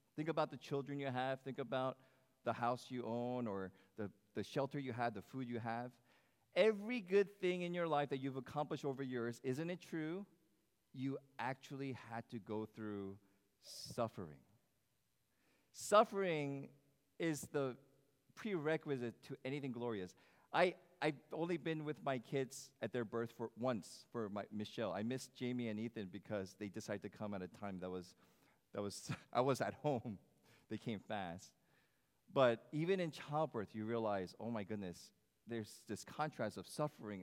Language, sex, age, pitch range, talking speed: English, male, 40-59, 110-155 Hz, 165 wpm